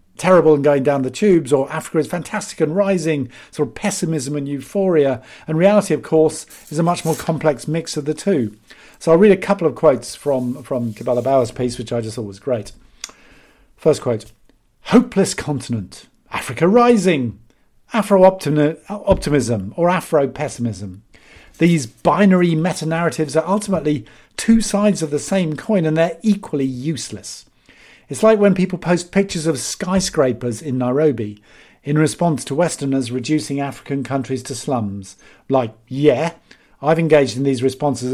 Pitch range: 125-175 Hz